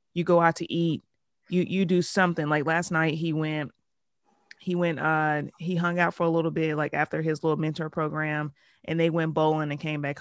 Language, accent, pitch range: English, American, 150-170 Hz